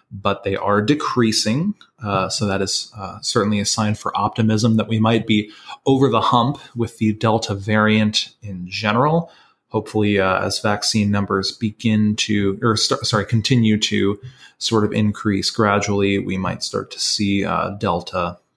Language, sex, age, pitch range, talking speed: English, male, 20-39, 105-120 Hz, 160 wpm